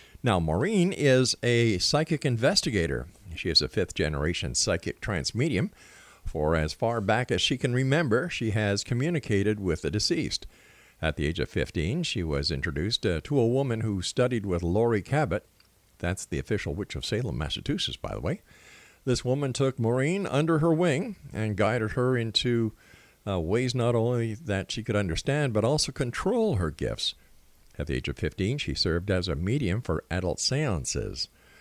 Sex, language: male, English